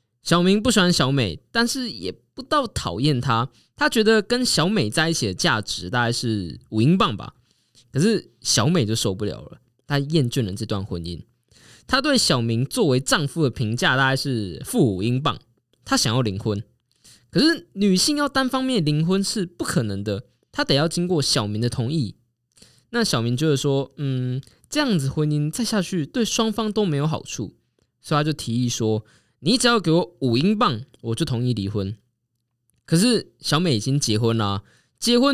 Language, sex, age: Chinese, male, 20-39